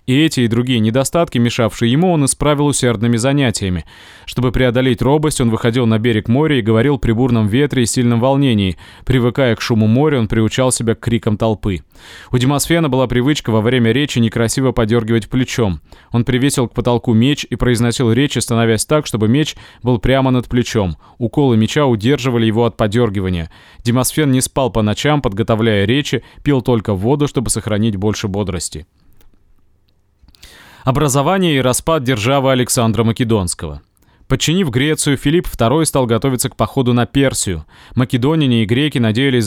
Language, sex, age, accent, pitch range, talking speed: Russian, male, 20-39, native, 110-135 Hz, 155 wpm